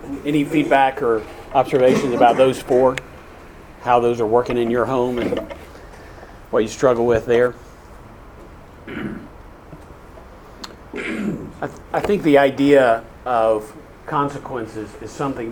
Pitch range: 110-135 Hz